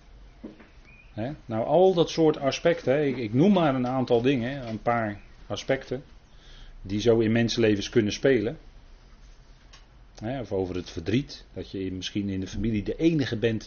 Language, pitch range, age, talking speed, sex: Dutch, 95-125 Hz, 40-59, 145 wpm, male